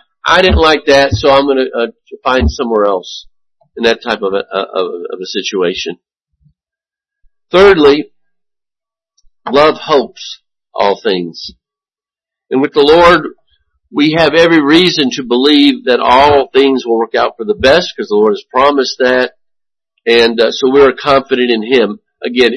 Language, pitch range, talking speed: English, 125-185 Hz, 160 wpm